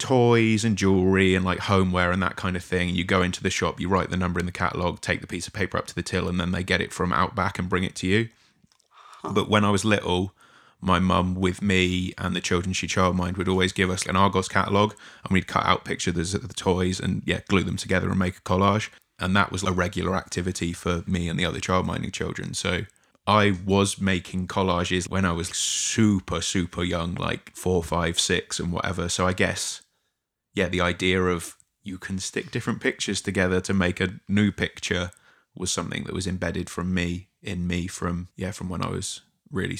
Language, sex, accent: English, male, British